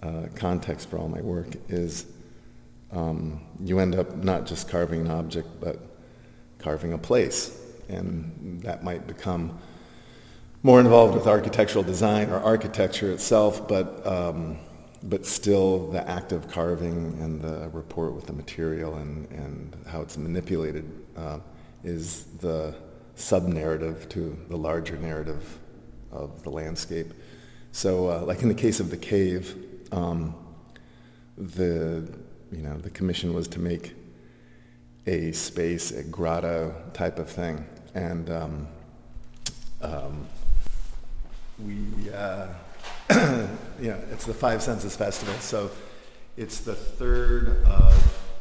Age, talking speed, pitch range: 40-59, 130 wpm, 80-95 Hz